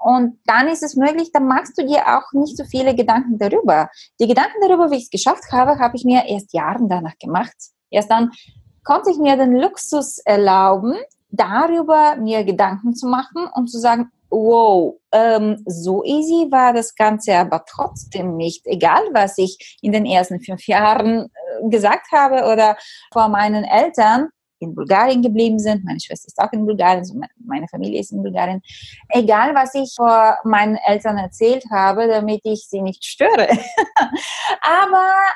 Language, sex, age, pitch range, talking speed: German, female, 20-39, 215-280 Hz, 170 wpm